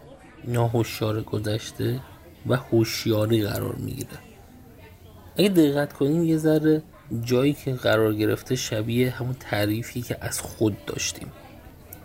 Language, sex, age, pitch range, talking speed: Persian, male, 30-49, 110-140 Hz, 110 wpm